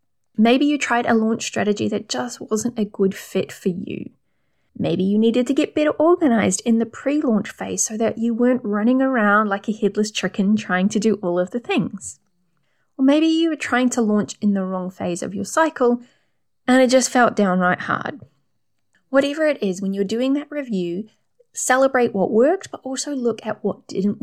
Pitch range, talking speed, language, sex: 190-245 Hz, 195 wpm, English, female